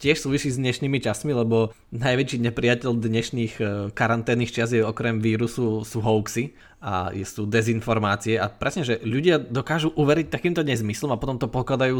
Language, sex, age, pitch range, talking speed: Slovak, male, 20-39, 110-125 Hz, 150 wpm